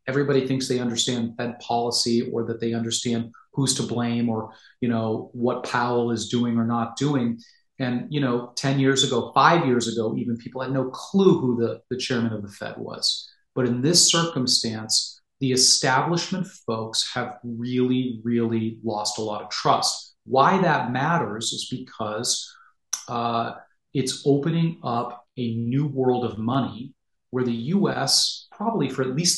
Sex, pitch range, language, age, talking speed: male, 115-135 Hz, English, 30-49, 165 wpm